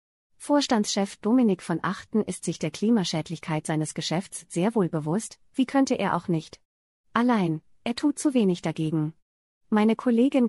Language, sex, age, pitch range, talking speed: German, female, 30-49, 165-220 Hz, 150 wpm